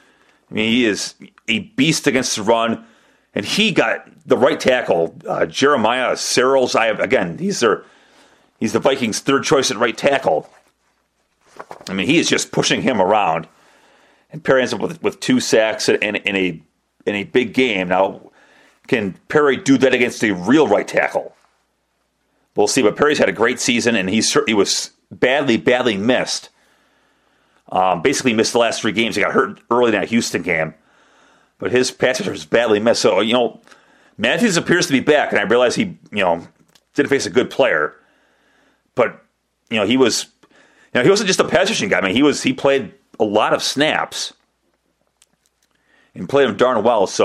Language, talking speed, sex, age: English, 190 wpm, male, 40-59